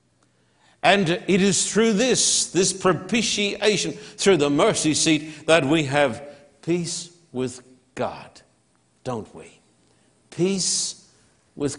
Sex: male